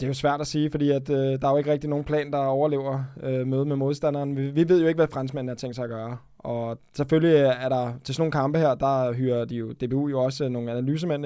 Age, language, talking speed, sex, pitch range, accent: 20-39, Danish, 280 wpm, male, 130-150 Hz, native